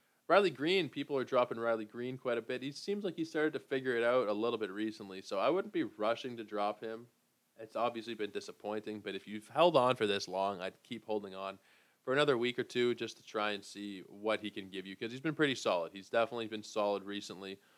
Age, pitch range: 20-39, 100-120 Hz